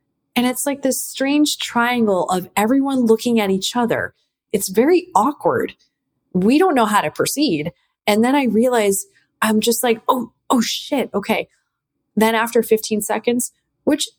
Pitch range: 180-235 Hz